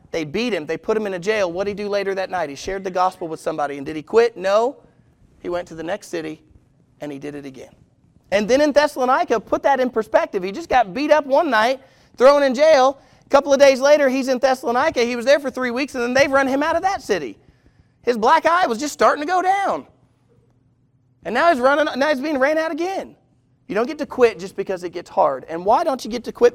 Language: English